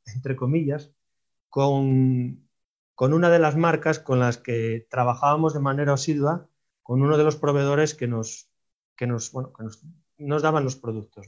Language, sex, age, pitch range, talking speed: Spanish, male, 30-49, 125-160 Hz, 165 wpm